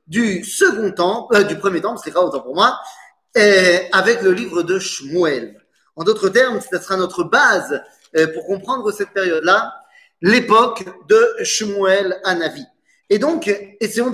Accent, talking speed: French, 165 wpm